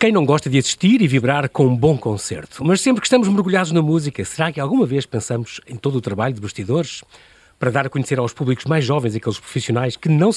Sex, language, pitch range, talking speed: male, Portuguese, 125-185 Hz, 235 wpm